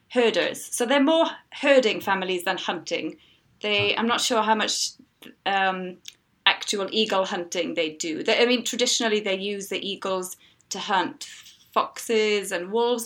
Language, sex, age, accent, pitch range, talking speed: English, female, 20-39, British, 180-245 Hz, 145 wpm